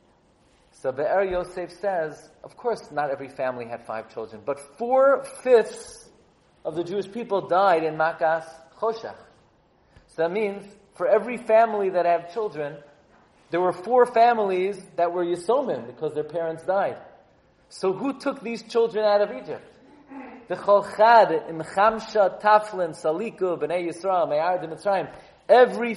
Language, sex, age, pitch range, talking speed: English, male, 40-59, 165-225 Hz, 140 wpm